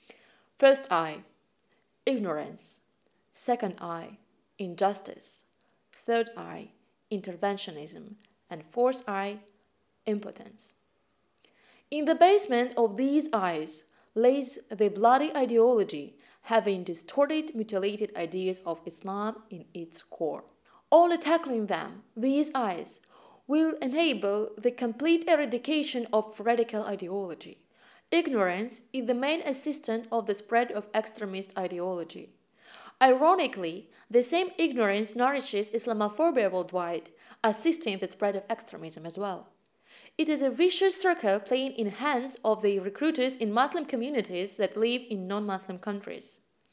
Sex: female